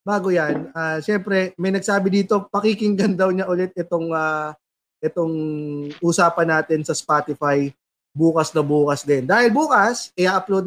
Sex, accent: male, native